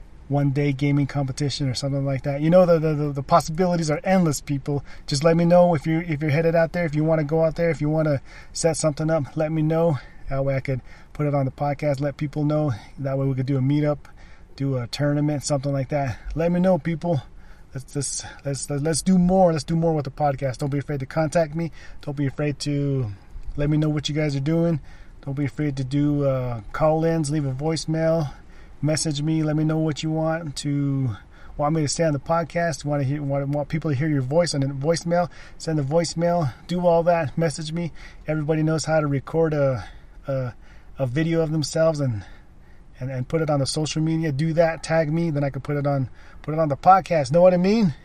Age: 30-49